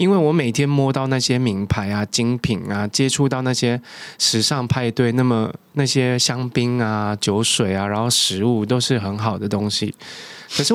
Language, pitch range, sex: Chinese, 110-145 Hz, male